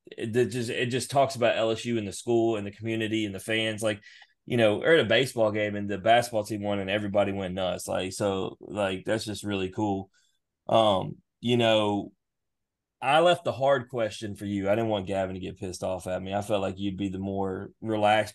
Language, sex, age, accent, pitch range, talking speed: English, male, 20-39, American, 100-125 Hz, 220 wpm